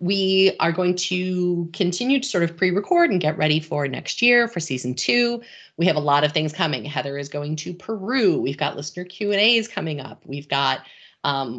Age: 30-49